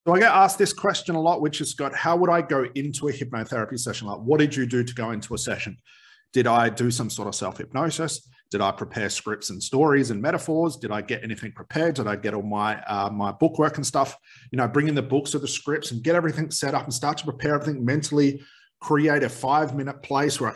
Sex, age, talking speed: male, 40-59, 250 wpm